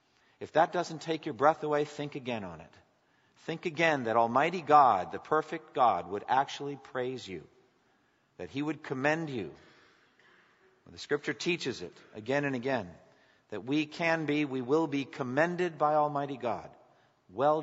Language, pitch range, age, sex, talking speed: English, 130-165 Hz, 50-69, male, 160 wpm